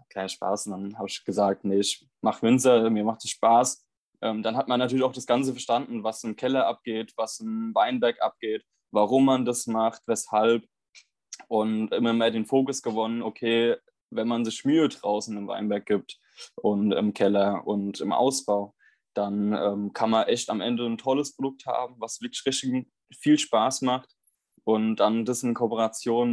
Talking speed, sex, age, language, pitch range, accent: 175 wpm, male, 20-39, German, 110-135 Hz, German